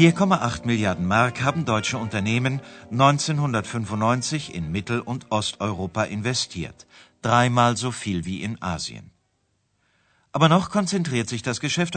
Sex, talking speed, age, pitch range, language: male, 115 wpm, 50-69, 105-135 Hz, Urdu